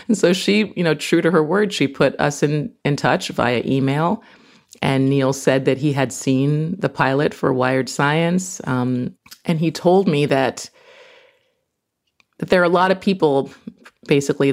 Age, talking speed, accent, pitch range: 30-49, 180 wpm, American, 130-175 Hz